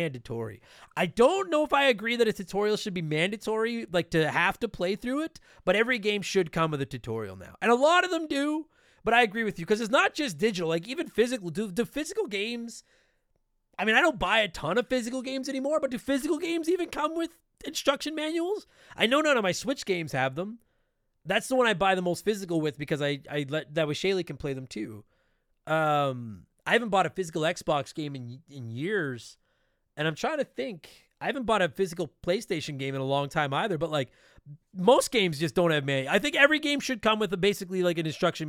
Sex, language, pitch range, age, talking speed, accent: male, English, 150-235 Hz, 30-49, 230 wpm, American